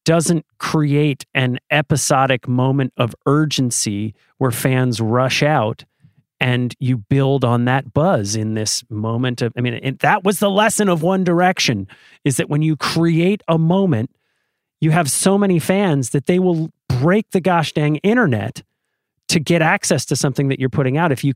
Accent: American